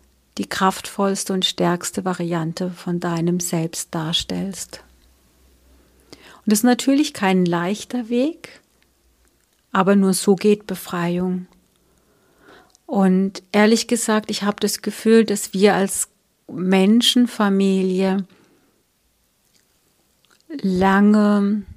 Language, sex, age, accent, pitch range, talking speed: German, female, 50-69, German, 180-205 Hz, 90 wpm